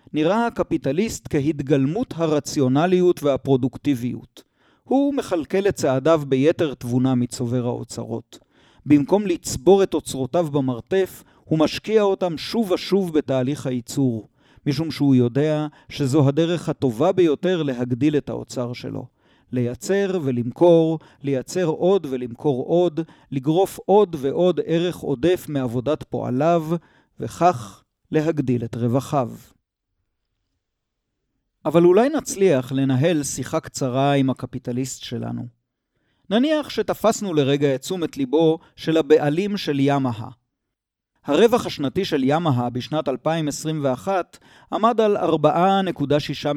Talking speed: 105 wpm